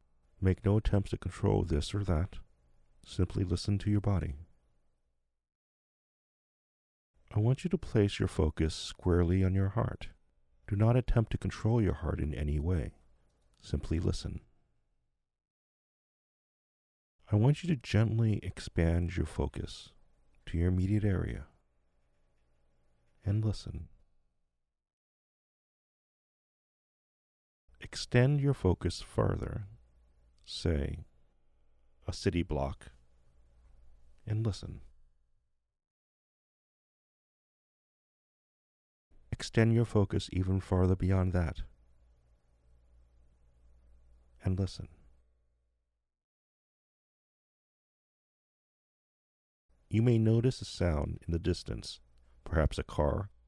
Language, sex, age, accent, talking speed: English, male, 40-59, American, 90 wpm